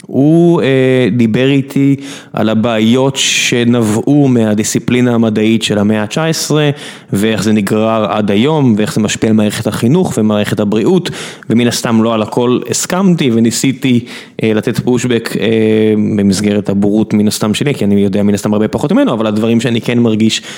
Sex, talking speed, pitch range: male, 150 wpm, 110-140 Hz